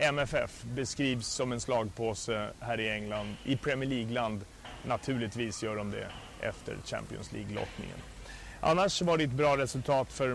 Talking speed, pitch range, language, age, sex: 145 wpm, 115-140 Hz, English, 30-49, male